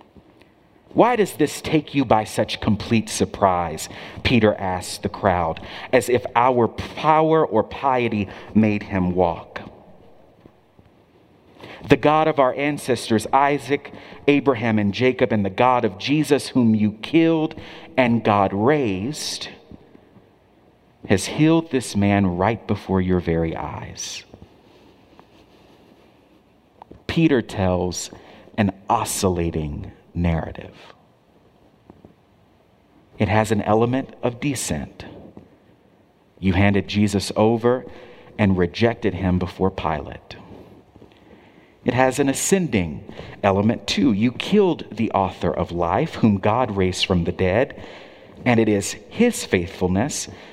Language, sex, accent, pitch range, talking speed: English, male, American, 95-130 Hz, 110 wpm